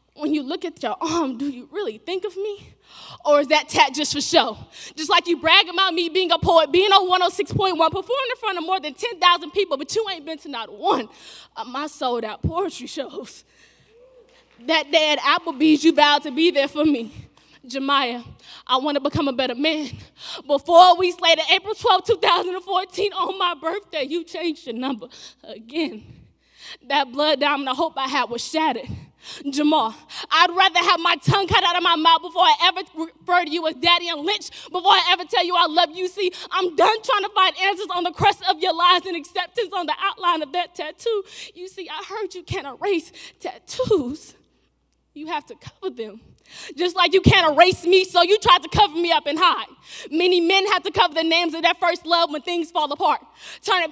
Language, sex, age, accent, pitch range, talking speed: English, female, 20-39, American, 300-375 Hz, 210 wpm